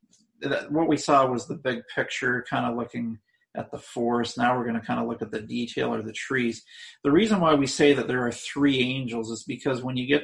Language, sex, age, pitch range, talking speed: English, male, 40-59, 120-150 Hz, 240 wpm